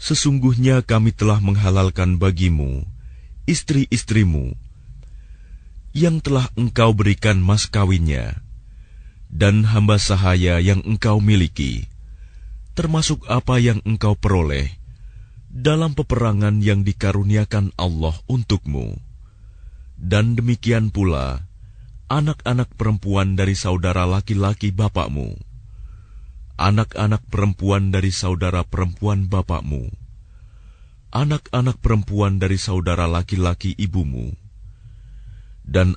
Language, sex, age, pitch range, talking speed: Indonesian, male, 30-49, 90-110 Hz, 85 wpm